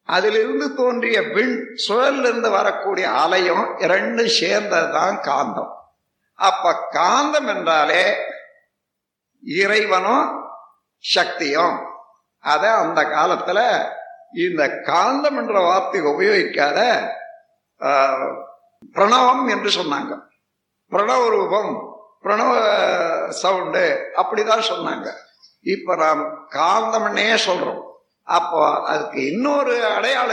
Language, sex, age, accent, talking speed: Tamil, male, 60-79, native, 75 wpm